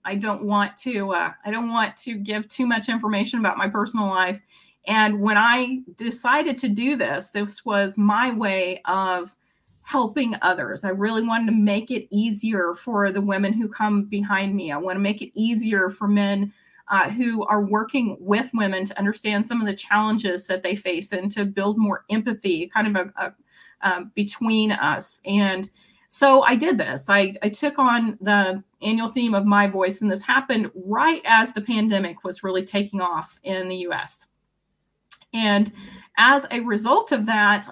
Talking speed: 185 wpm